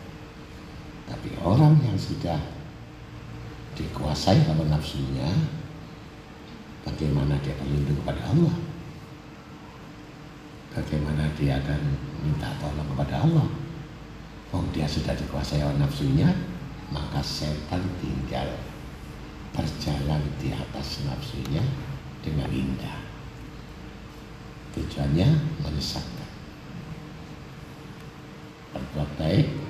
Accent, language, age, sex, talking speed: native, Indonesian, 60-79, male, 75 wpm